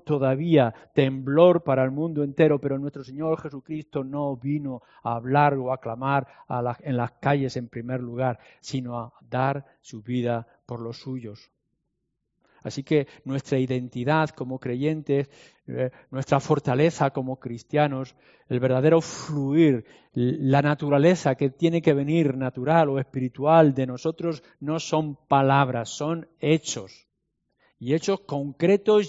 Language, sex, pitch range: Spanish, male, 130-170 Hz